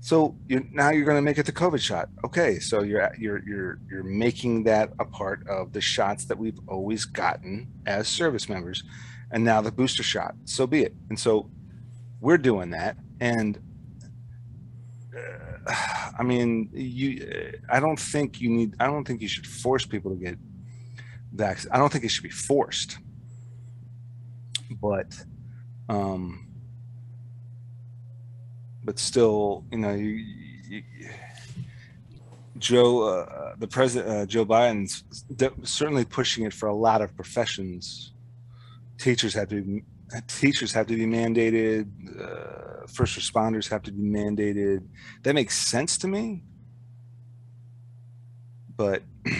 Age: 30-49